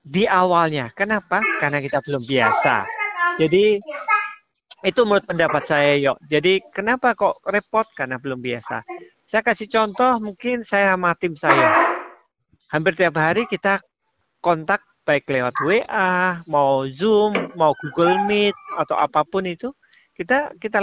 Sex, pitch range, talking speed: male, 155-230 Hz, 135 wpm